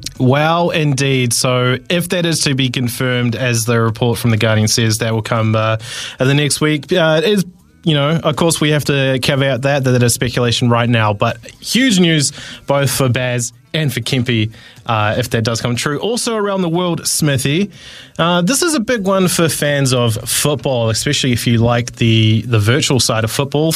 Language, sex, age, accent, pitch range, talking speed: English, male, 20-39, Australian, 120-150 Hz, 200 wpm